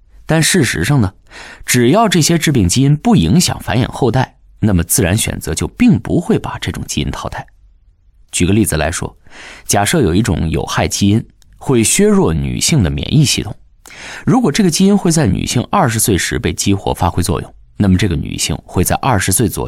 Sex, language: male, Chinese